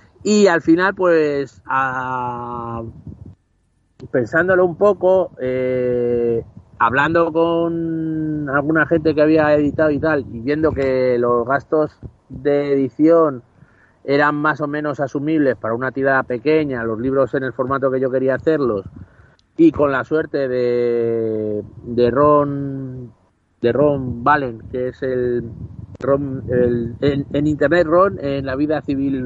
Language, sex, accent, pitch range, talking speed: Spanish, male, Spanish, 125-155 Hz, 135 wpm